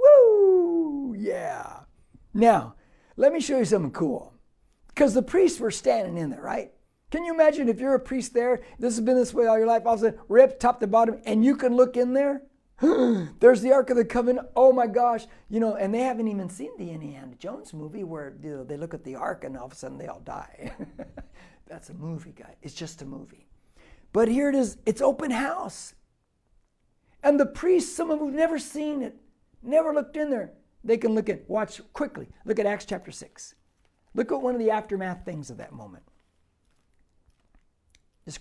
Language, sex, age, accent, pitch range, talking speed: English, male, 50-69, American, 200-260 Hz, 210 wpm